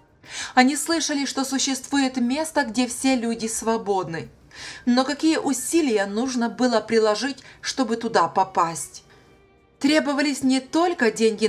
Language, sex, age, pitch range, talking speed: Russian, female, 20-39, 200-250 Hz, 115 wpm